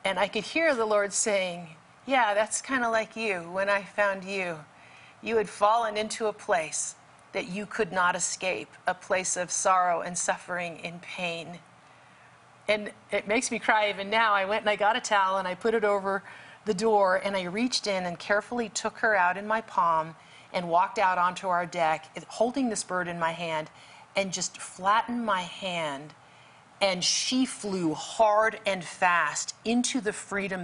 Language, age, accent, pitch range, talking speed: English, 40-59, American, 175-220 Hz, 185 wpm